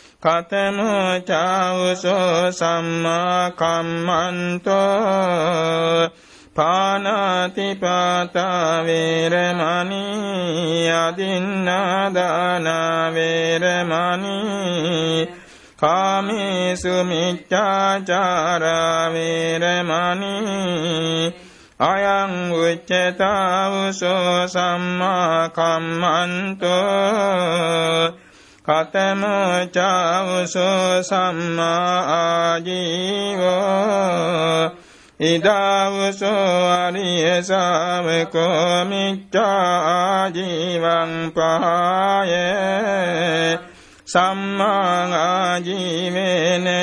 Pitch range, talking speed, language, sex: 165-190 Hz, 35 wpm, Vietnamese, male